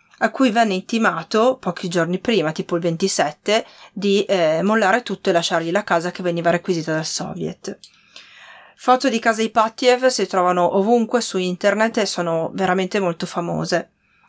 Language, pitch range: Italian, 180-225 Hz